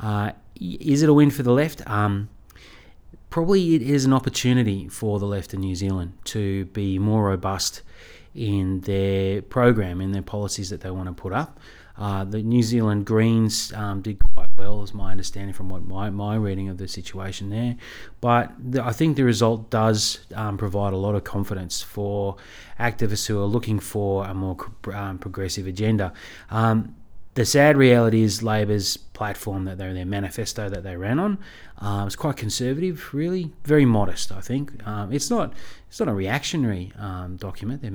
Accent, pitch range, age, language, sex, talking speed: Australian, 95-120 Hz, 30-49, English, male, 180 wpm